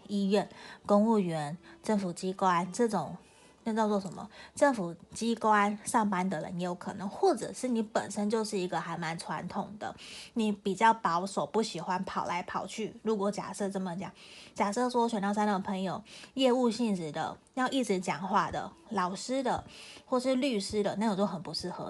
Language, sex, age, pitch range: Chinese, female, 20-39, 185-225 Hz